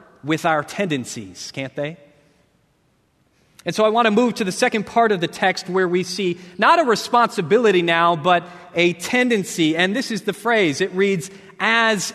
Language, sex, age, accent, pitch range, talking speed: English, male, 30-49, American, 165-210 Hz, 180 wpm